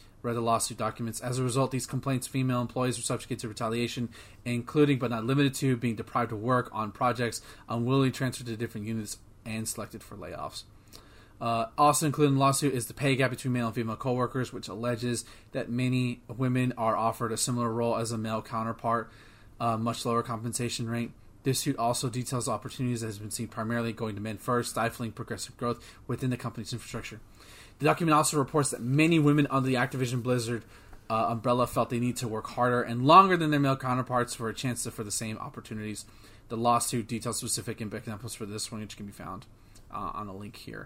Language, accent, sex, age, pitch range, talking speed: English, American, male, 20-39, 110-125 Hz, 205 wpm